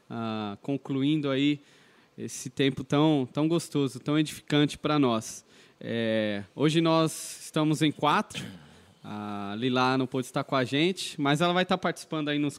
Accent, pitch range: Brazilian, 125-165 Hz